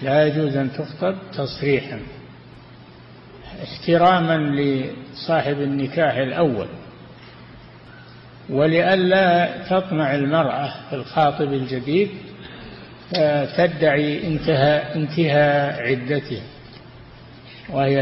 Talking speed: 65 wpm